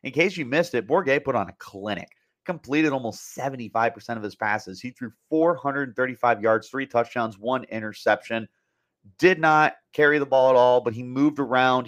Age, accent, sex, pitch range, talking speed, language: 30-49, American, male, 110-140 Hz, 175 wpm, English